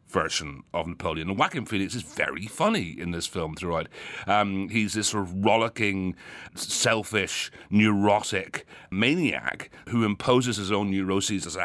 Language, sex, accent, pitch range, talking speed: English, male, British, 85-110 Hz, 145 wpm